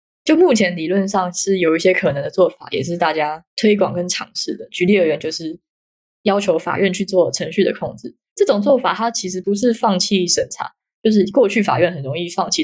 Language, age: Chinese, 20-39